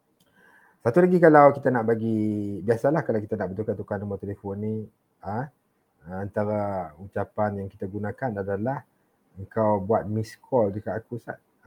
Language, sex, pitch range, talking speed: English, male, 100-130 Hz, 145 wpm